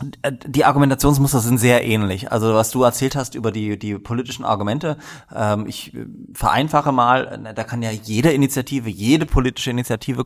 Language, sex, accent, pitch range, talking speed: German, male, German, 105-130 Hz, 160 wpm